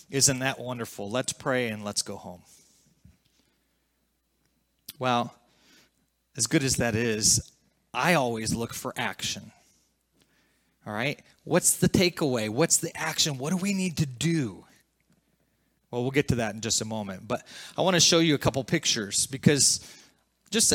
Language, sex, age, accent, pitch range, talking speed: English, male, 30-49, American, 110-155 Hz, 155 wpm